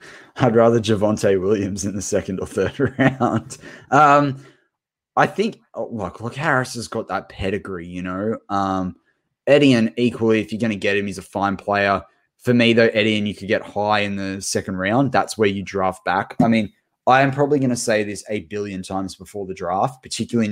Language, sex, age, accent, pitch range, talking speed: English, male, 20-39, Australian, 95-115 Hz, 200 wpm